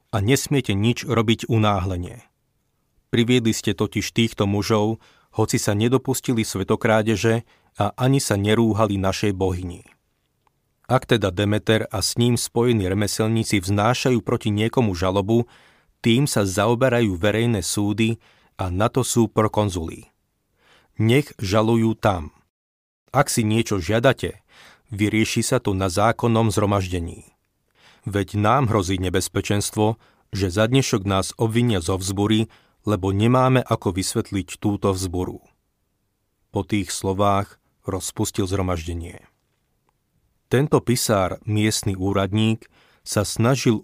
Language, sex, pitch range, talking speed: Slovak, male, 100-115 Hz, 115 wpm